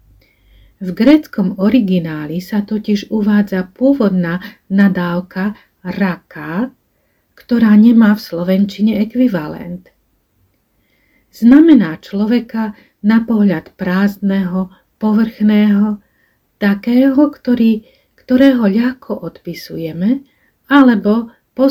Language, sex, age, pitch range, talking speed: Slovak, female, 40-59, 185-230 Hz, 75 wpm